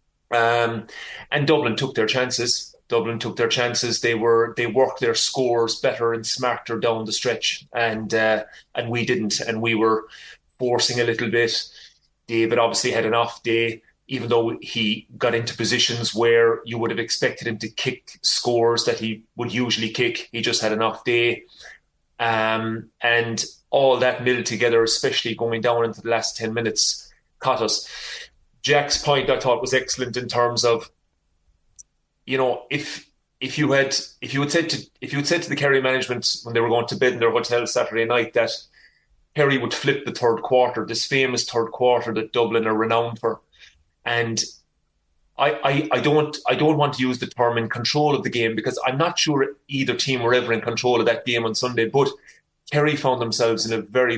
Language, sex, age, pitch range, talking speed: English, male, 30-49, 115-125 Hz, 195 wpm